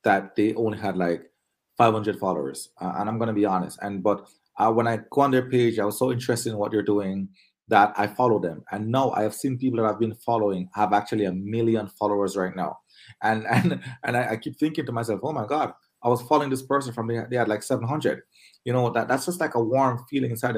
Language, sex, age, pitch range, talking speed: English, male, 30-49, 115-150 Hz, 245 wpm